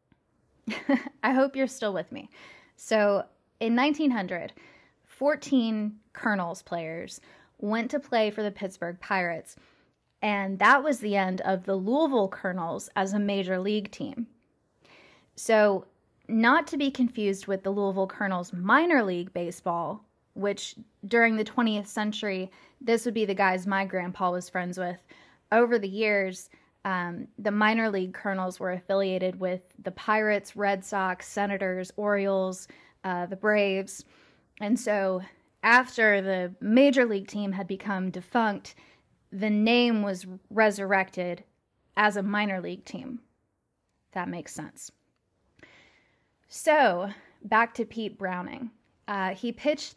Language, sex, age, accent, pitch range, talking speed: English, female, 10-29, American, 190-230 Hz, 130 wpm